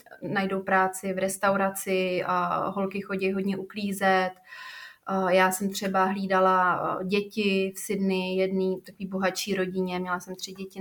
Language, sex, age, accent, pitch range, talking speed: Czech, female, 20-39, native, 190-215 Hz, 140 wpm